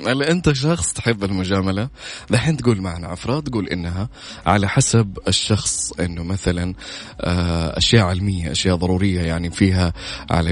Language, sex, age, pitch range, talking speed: Arabic, male, 20-39, 95-135 Hz, 130 wpm